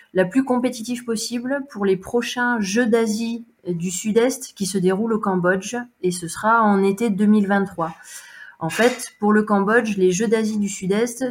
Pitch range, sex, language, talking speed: 180-220 Hz, female, French, 170 wpm